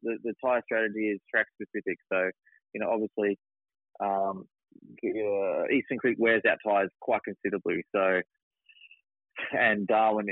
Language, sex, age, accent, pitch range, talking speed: English, male, 20-39, Australian, 95-110 Hz, 130 wpm